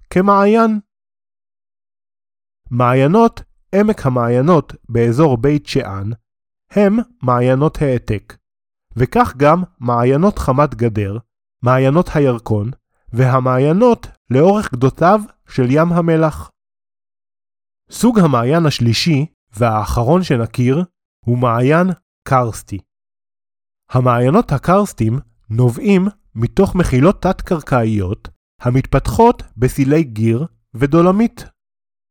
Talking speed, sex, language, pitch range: 75 wpm, male, Hebrew, 120-190 Hz